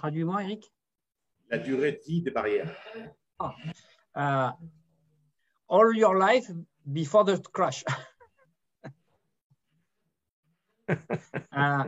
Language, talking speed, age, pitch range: English, 55 wpm, 50-69, 140-180 Hz